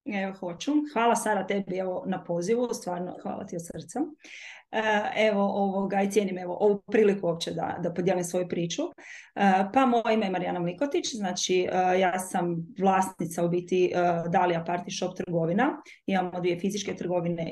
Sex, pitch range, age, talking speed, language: female, 180-220 Hz, 20-39, 155 wpm, Croatian